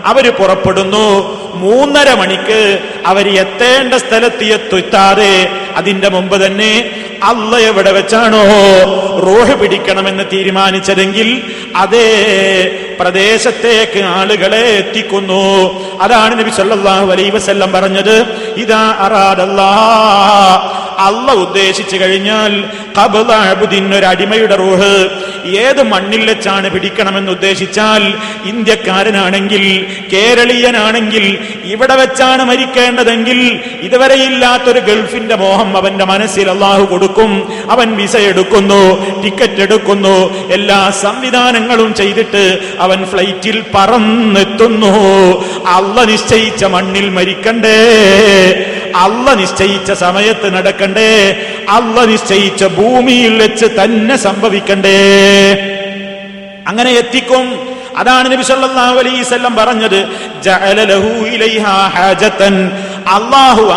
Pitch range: 195-220 Hz